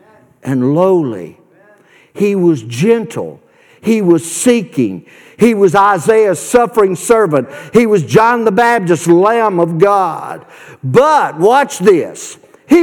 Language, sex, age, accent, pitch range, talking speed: English, male, 60-79, American, 165-275 Hz, 115 wpm